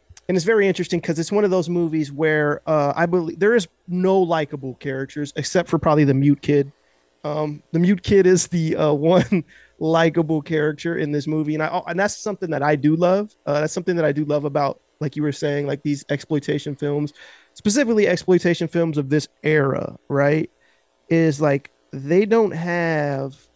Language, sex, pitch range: English, male, 140-165 Hz